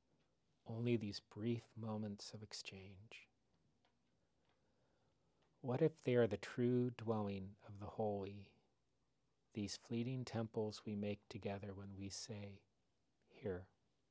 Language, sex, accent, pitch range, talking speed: English, male, American, 100-120 Hz, 110 wpm